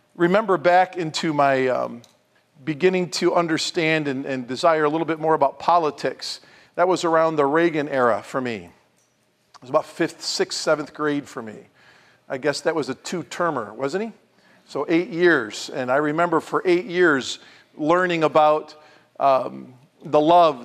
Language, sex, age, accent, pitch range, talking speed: English, male, 50-69, American, 130-175 Hz, 165 wpm